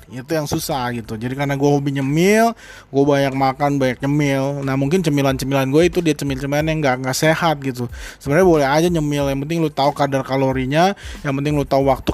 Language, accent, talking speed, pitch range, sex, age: Indonesian, native, 205 wpm, 135-160 Hz, male, 20-39